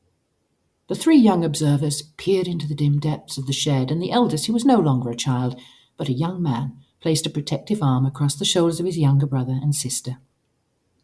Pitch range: 135-170 Hz